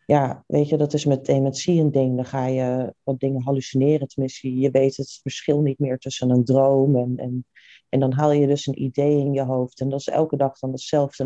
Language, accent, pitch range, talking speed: Dutch, Dutch, 125-160 Hz, 235 wpm